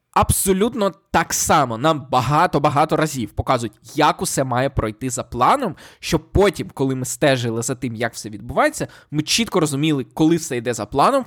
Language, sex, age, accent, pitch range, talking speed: Ukrainian, male, 20-39, native, 135-180 Hz, 165 wpm